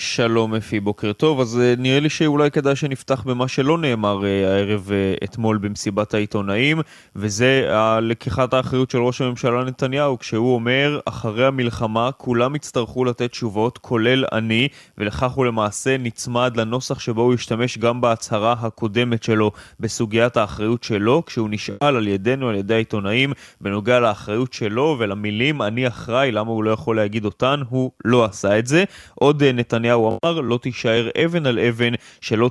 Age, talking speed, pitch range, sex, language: 20-39, 150 wpm, 115-135 Hz, male, Hebrew